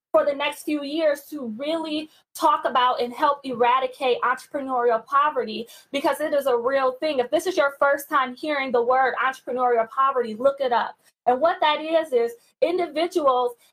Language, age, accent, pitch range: English, 20-39, American, 245-295 Hz